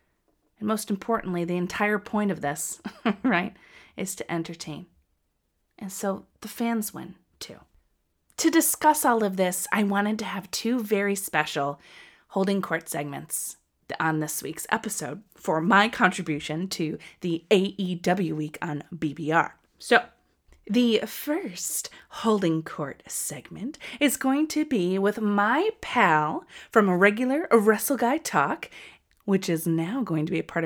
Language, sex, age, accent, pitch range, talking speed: English, female, 30-49, American, 160-225 Hz, 140 wpm